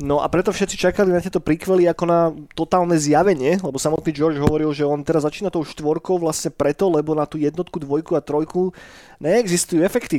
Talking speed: 195 wpm